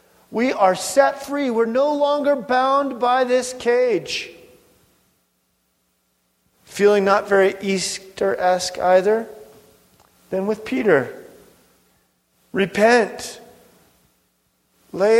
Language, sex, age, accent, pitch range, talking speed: English, male, 40-59, American, 180-255 Hz, 85 wpm